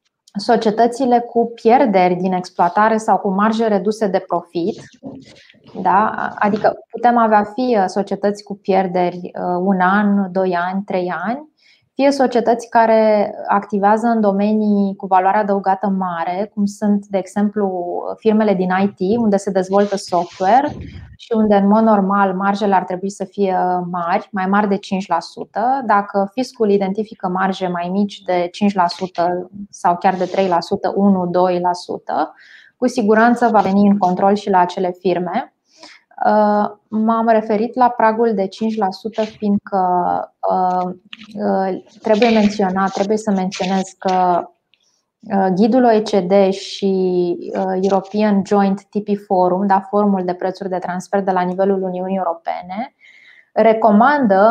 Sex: female